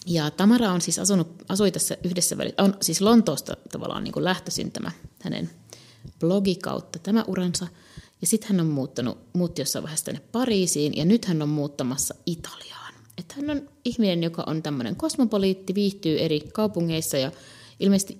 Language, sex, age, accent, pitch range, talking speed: Finnish, female, 30-49, native, 150-190 Hz, 160 wpm